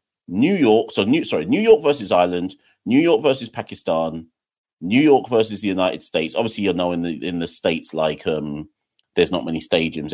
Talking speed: 195 wpm